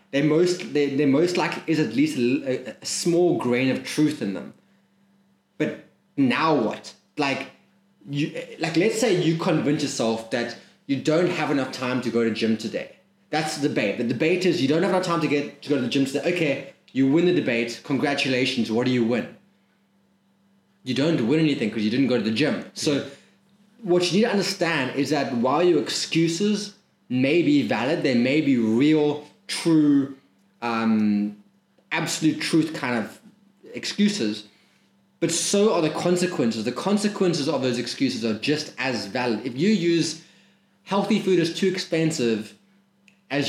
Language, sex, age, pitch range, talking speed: English, male, 20-39, 130-190 Hz, 175 wpm